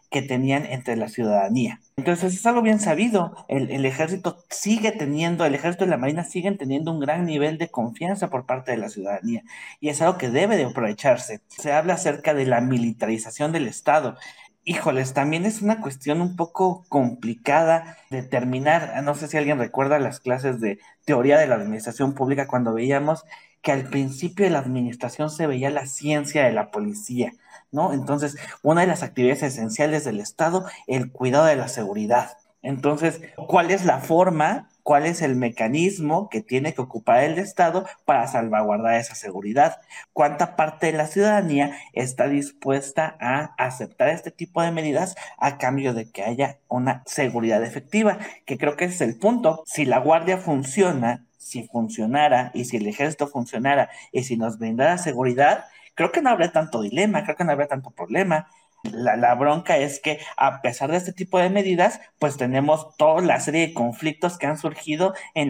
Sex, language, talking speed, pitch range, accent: male, Spanish, 180 wpm, 130-170 Hz, Mexican